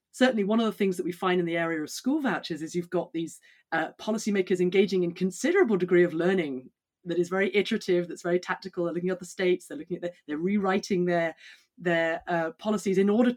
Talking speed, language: 225 wpm, English